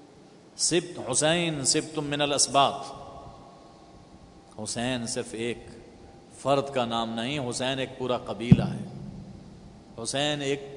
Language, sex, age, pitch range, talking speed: Urdu, male, 50-69, 125-180 Hz, 105 wpm